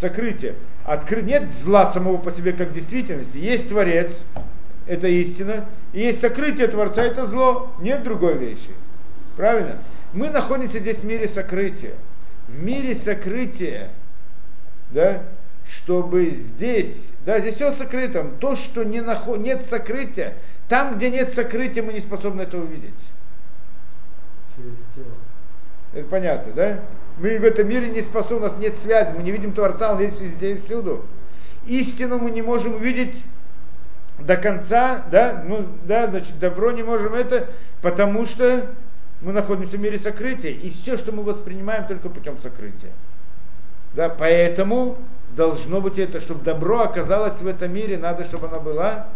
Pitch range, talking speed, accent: 180-235 Hz, 150 wpm, native